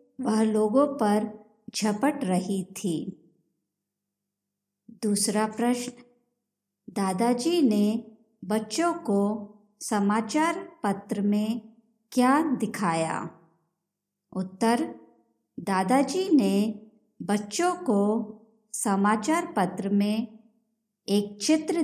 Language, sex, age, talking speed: Hindi, male, 50-69, 75 wpm